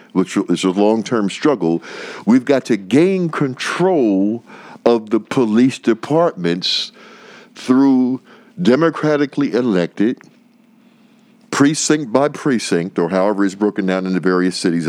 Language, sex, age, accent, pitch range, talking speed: English, male, 60-79, American, 90-150 Hz, 115 wpm